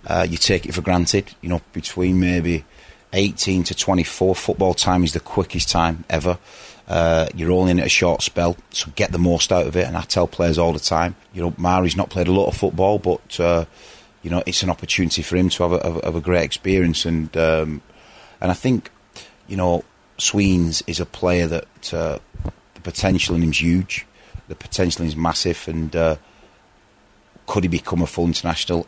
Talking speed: 205 wpm